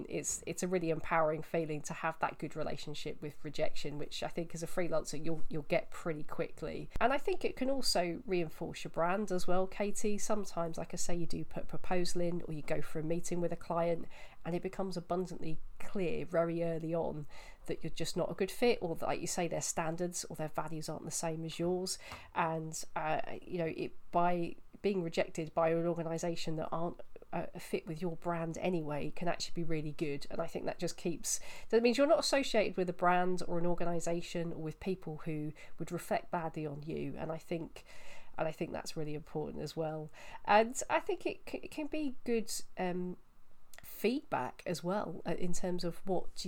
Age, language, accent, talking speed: 40-59, English, British, 205 wpm